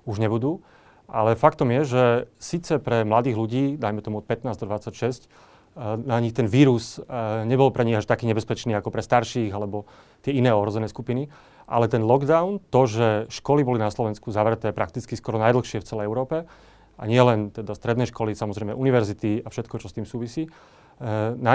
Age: 30-49